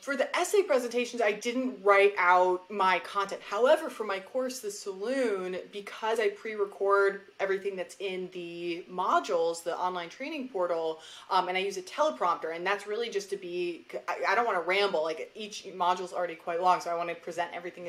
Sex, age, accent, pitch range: female, 20-39, American, 175-220 Hz